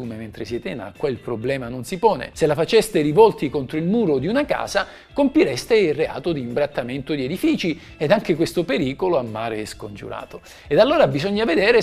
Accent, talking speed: native, 190 wpm